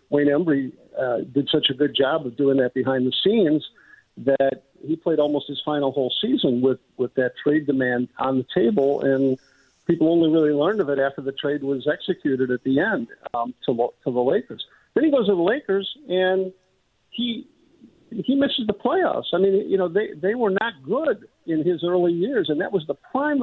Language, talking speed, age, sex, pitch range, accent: English, 205 wpm, 50-69, male, 130-175 Hz, American